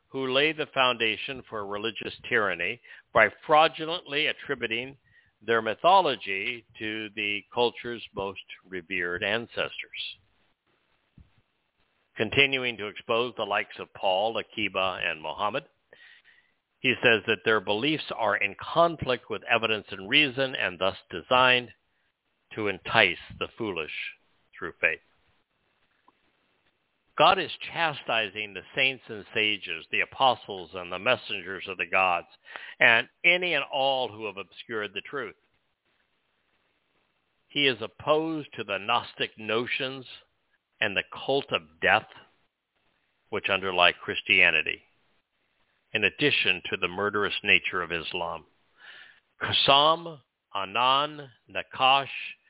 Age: 60-79